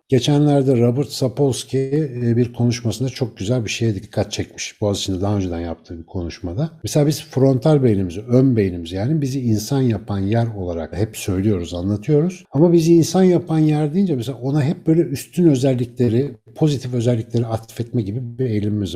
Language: Turkish